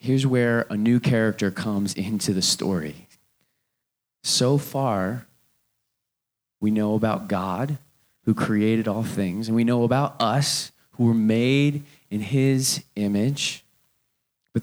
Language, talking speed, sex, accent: English, 125 wpm, male, American